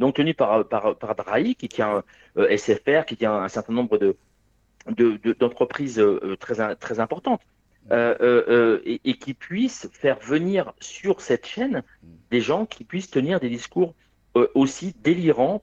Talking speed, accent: 170 wpm, French